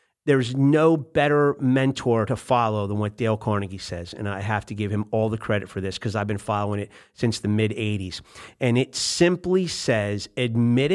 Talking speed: 190 wpm